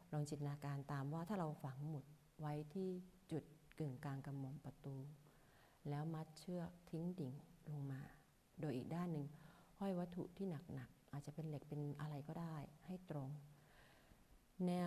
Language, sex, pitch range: Thai, female, 145-165 Hz